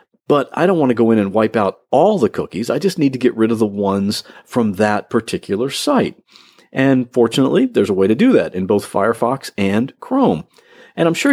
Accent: American